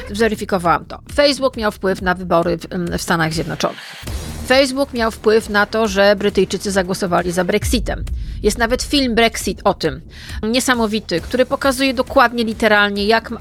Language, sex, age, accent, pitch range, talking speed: Polish, female, 40-59, native, 205-250 Hz, 150 wpm